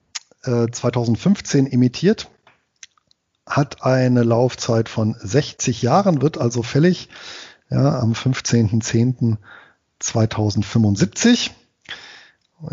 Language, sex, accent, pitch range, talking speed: German, male, German, 110-130 Hz, 65 wpm